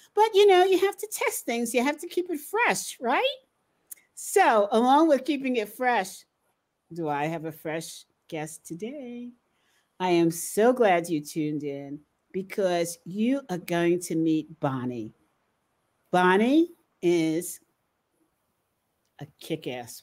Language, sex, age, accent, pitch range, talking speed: English, female, 50-69, American, 165-265 Hz, 140 wpm